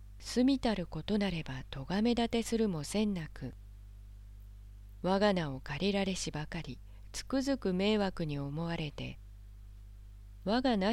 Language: Japanese